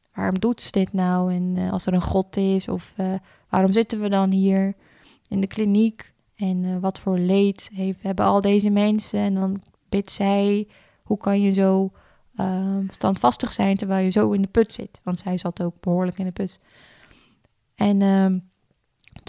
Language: Dutch